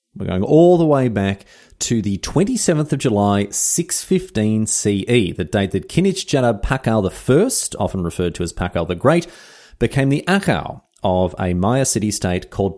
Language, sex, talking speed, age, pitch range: English, male, 165 wpm, 30-49, 100-150 Hz